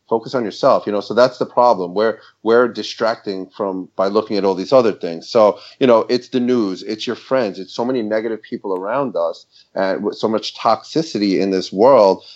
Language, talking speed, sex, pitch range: English, 215 wpm, male, 105-135 Hz